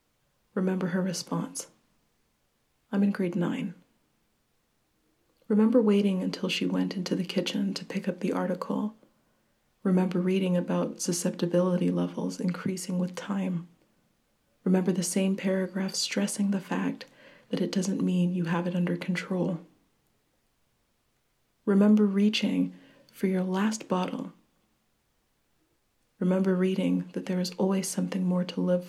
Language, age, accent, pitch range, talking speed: English, 30-49, American, 180-200 Hz, 125 wpm